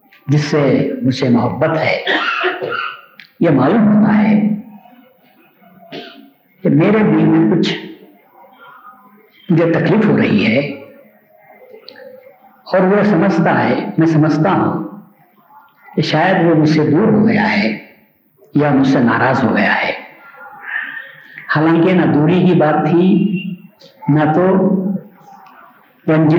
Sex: male